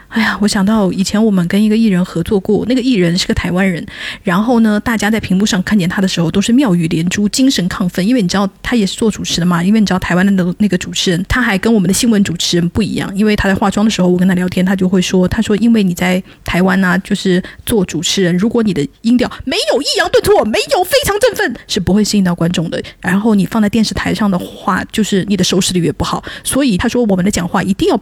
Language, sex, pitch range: Chinese, female, 185-225 Hz